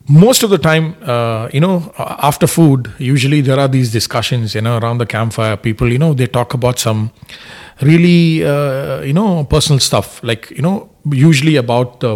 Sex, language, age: male, English, 30-49